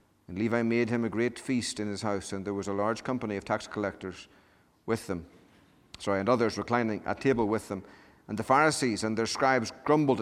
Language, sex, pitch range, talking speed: English, male, 100-125 Hz, 210 wpm